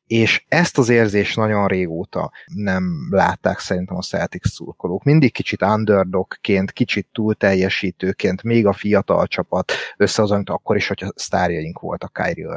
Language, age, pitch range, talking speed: Hungarian, 30-49, 95-120 Hz, 150 wpm